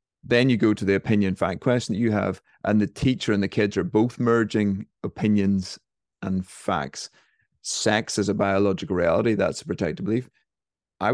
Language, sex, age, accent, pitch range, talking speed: English, male, 30-49, British, 95-110 Hz, 180 wpm